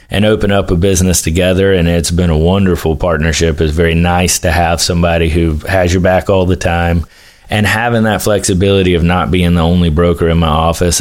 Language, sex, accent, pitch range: English, male, American, 80-95 Hz